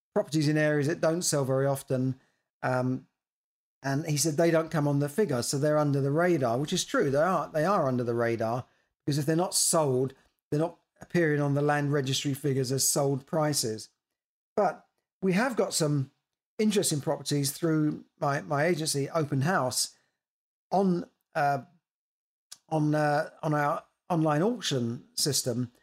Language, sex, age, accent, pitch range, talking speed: English, male, 40-59, British, 140-170 Hz, 165 wpm